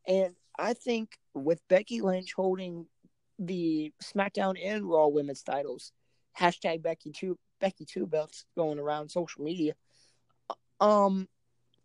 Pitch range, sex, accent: 155-200 Hz, male, American